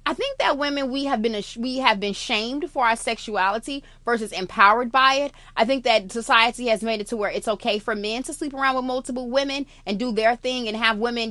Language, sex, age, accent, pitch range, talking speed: English, female, 20-39, American, 205-255 Hz, 235 wpm